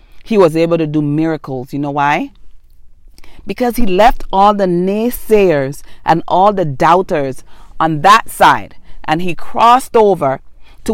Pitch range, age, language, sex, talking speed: 160-225 Hz, 40-59, English, female, 150 wpm